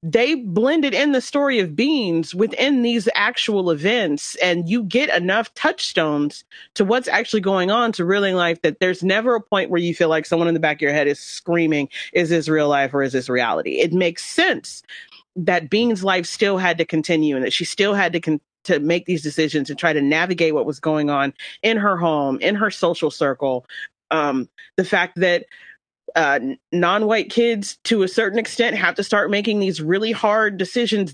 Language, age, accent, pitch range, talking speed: English, 30-49, American, 170-235 Hz, 200 wpm